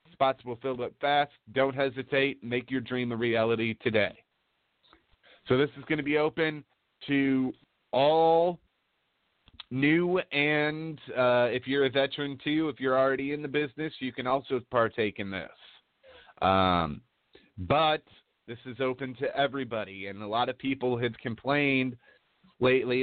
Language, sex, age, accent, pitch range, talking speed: English, male, 30-49, American, 115-140 Hz, 145 wpm